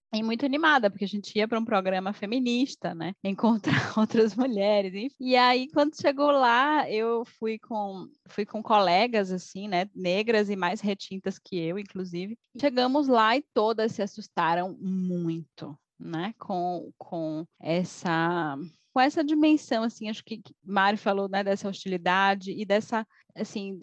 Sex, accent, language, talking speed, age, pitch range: female, Brazilian, Portuguese, 155 wpm, 10-29, 185-235 Hz